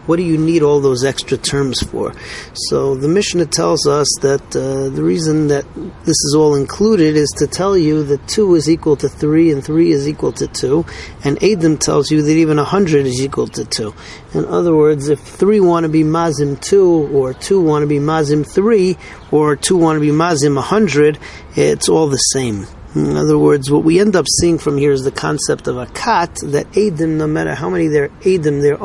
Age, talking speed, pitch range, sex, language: 40-59, 210 wpm, 140-165 Hz, male, English